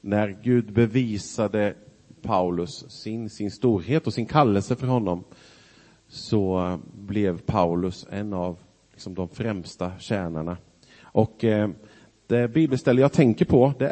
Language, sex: Swedish, male